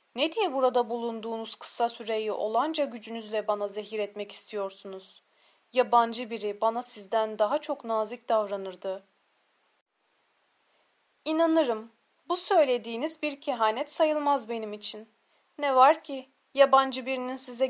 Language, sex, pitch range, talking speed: Turkish, female, 215-265 Hz, 115 wpm